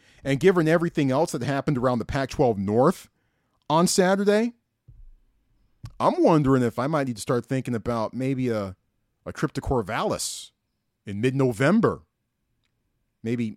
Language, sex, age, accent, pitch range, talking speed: English, male, 40-59, American, 100-150 Hz, 135 wpm